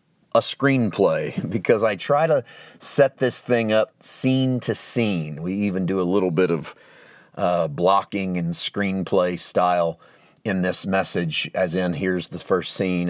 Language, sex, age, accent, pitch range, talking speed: English, male, 30-49, American, 85-100 Hz, 155 wpm